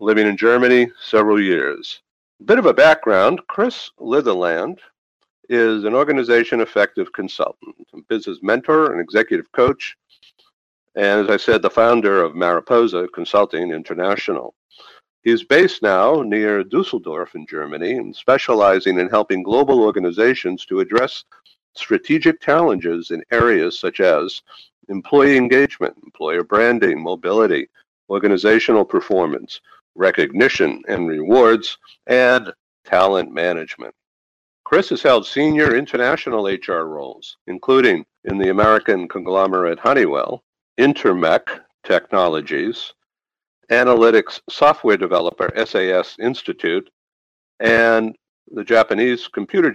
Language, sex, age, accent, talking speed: English, male, 50-69, American, 110 wpm